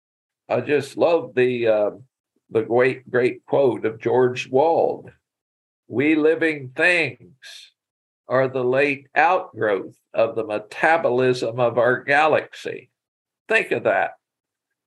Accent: American